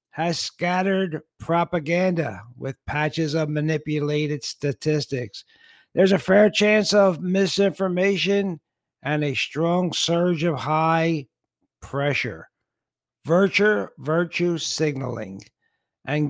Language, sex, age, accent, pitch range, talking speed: English, male, 60-79, American, 125-175 Hz, 90 wpm